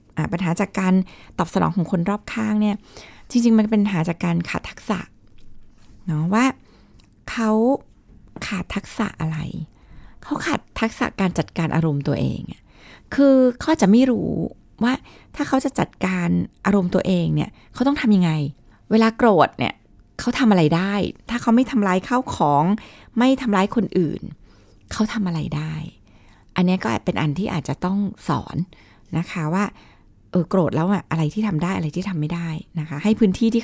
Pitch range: 160-215 Hz